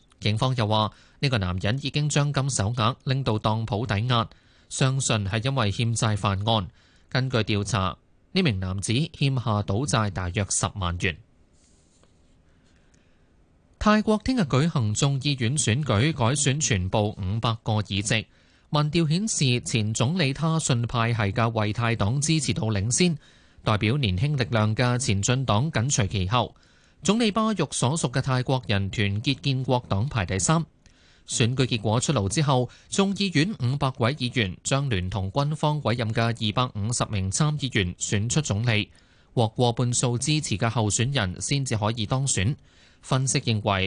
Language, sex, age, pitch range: Chinese, male, 20-39, 105-140 Hz